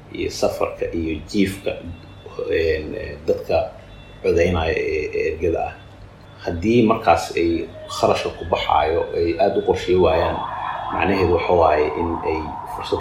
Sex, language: male, English